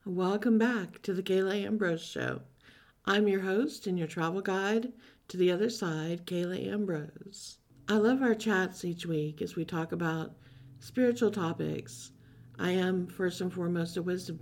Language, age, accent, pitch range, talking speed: English, 50-69, American, 160-205 Hz, 160 wpm